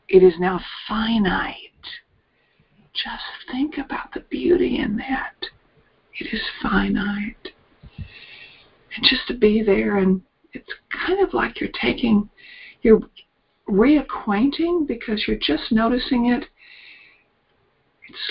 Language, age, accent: English, 50-69, American